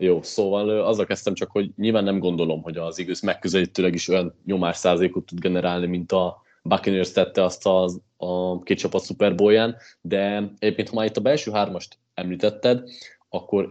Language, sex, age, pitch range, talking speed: Hungarian, male, 20-39, 90-110 Hz, 170 wpm